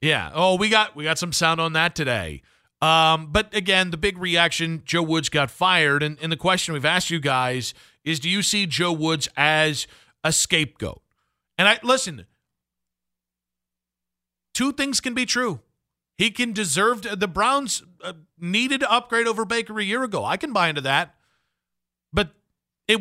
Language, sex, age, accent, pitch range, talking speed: English, male, 40-59, American, 140-190 Hz, 175 wpm